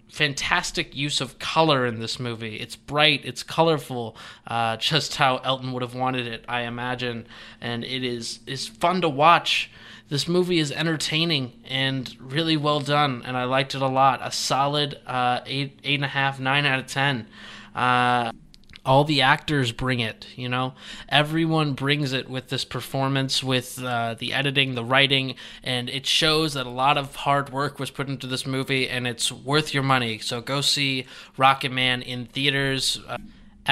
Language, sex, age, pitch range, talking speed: English, male, 20-39, 120-140 Hz, 180 wpm